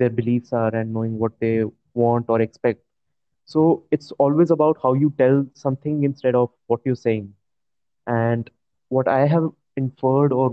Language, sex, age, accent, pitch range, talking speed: English, male, 20-39, Indian, 115-135 Hz, 165 wpm